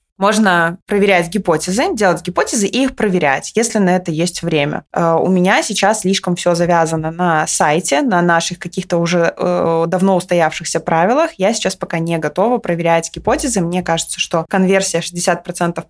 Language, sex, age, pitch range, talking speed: Russian, female, 20-39, 165-195 Hz, 150 wpm